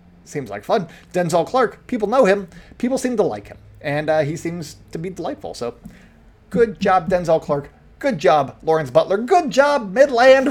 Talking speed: 185 wpm